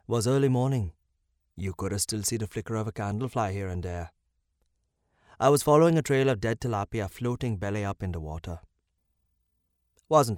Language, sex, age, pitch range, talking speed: English, male, 30-49, 85-110 Hz, 185 wpm